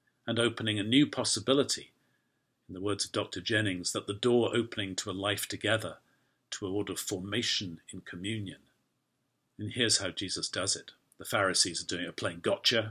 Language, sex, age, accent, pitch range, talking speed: English, male, 50-69, British, 105-140 Hz, 180 wpm